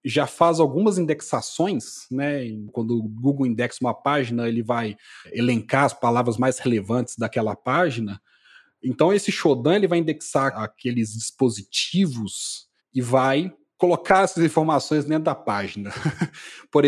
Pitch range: 125-175 Hz